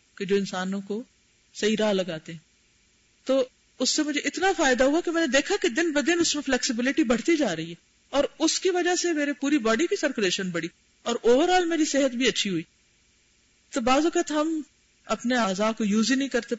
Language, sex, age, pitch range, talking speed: Urdu, female, 50-69, 200-275 Hz, 210 wpm